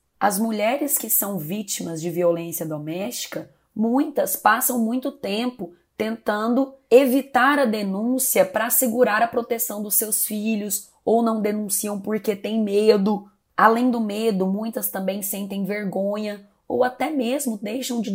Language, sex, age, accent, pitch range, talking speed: Portuguese, female, 20-39, Brazilian, 185-230 Hz, 135 wpm